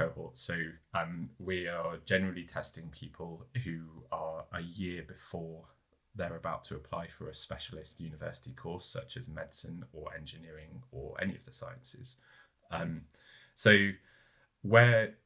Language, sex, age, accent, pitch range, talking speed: English, male, 20-39, British, 80-95 Hz, 135 wpm